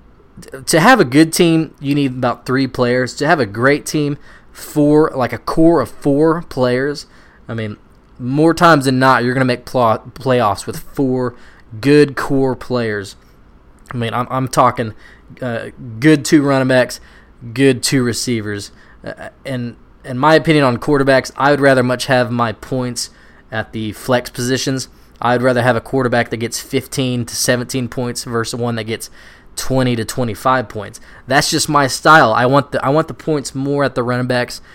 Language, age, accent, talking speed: English, 20-39, American, 180 wpm